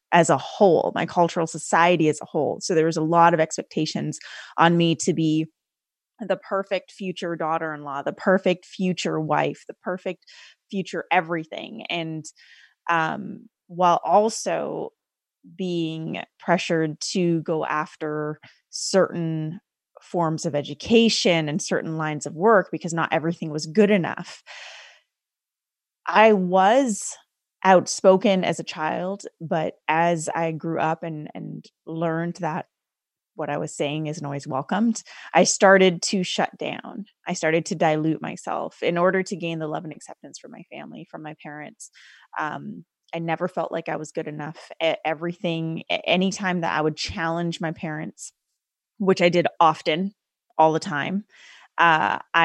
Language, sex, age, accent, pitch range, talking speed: English, female, 20-39, American, 160-185 Hz, 145 wpm